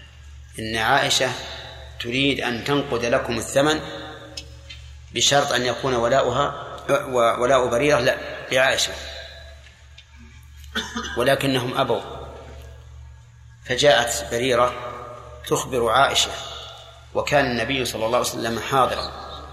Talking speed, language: 85 wpm, Arabic